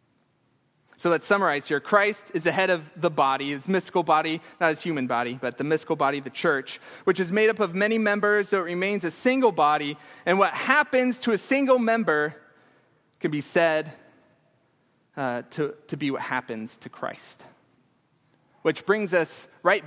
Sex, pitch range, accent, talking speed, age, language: male, 140-205 Hz, American, 180 wpm, 20-39, English